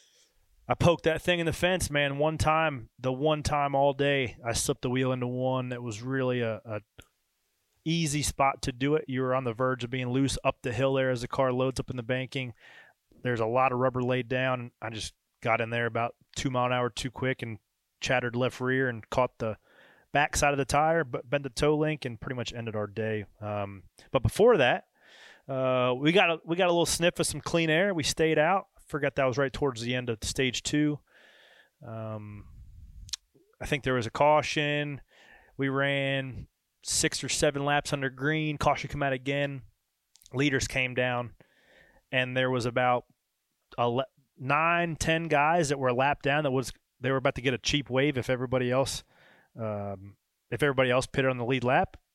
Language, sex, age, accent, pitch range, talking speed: English, male, 30-49, American, 120-145 Hz, 205 wpm